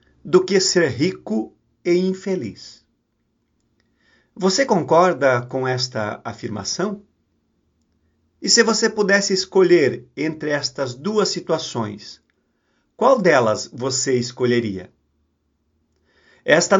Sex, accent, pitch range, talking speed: male, Brazilian, 120-180 Hz, 90 wpm